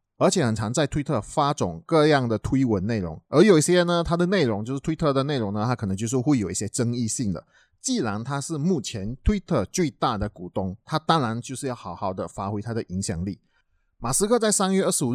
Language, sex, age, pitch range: Chinese, male, 30-49, 110-170 Hz